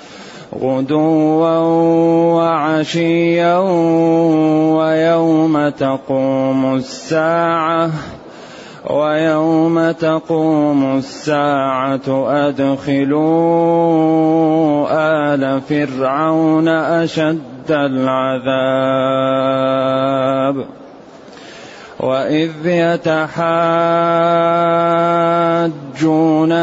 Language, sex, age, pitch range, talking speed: Arabic, male, 30-49, 150-165 Hz, 35 wpm